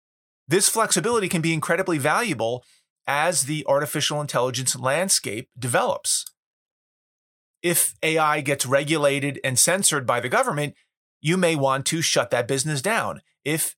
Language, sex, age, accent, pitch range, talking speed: English, male, 30-49, American, 135-175 Hz, 130 wpm